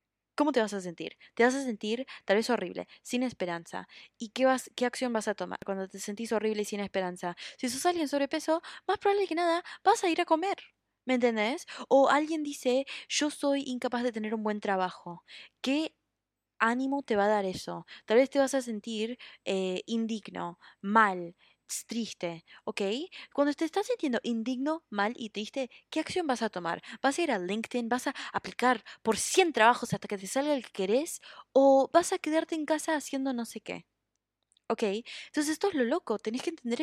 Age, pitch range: 20-39, 210-285 Hz